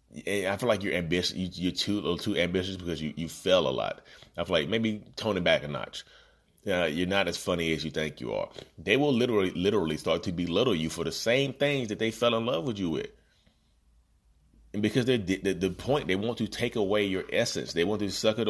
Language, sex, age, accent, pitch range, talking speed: English, male, 30-49, American, 85-105 Hz, 235 wpm